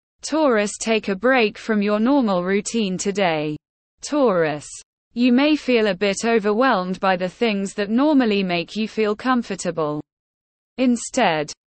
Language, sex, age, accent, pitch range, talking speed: English, female, 20-39, British, 190-245 Hz, 135 wpm